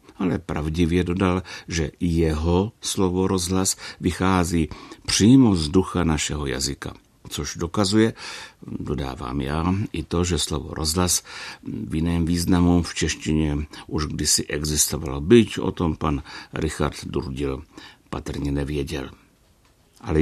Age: 60-79